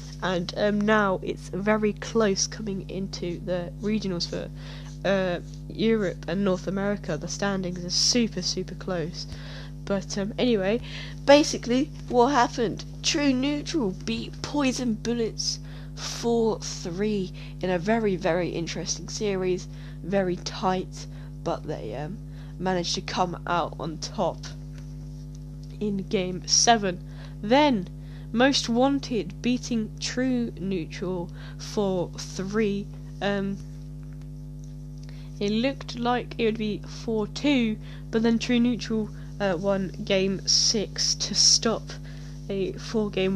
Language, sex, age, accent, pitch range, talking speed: English, female, 10-29, British, 145-210 Hz, 115 wpm